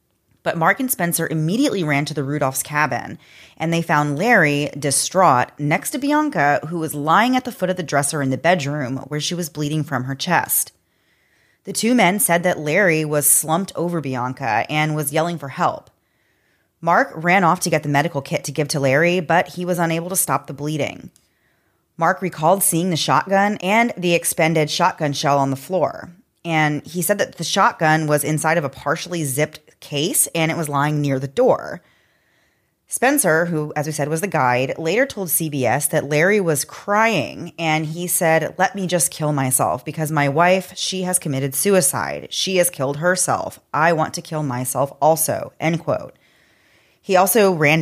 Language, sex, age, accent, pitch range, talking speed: English, female, 30-49, American, 140-175 Hz, 190 wpm